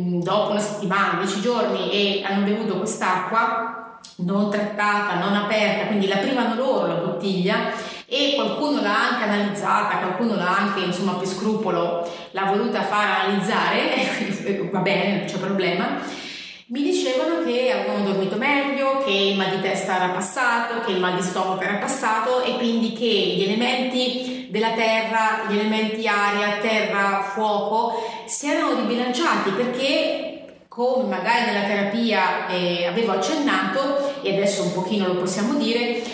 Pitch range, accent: 195-245 Hz, native